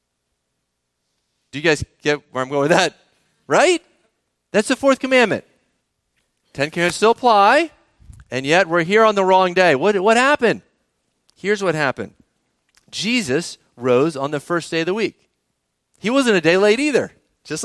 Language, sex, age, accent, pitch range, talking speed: English, male, 40-59, American, 155-220 Hz, 165 wpm